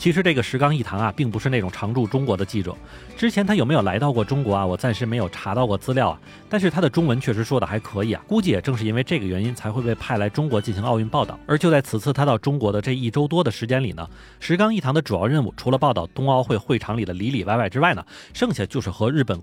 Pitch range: 105-145 Hz